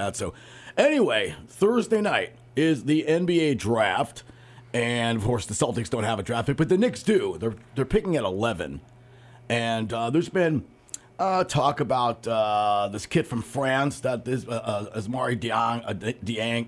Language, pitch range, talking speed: English, 100-130 Hz, 160 wpm